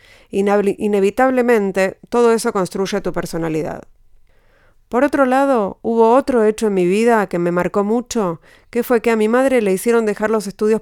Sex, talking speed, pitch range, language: female, 165 wpm, 190-230 Hz, Spanish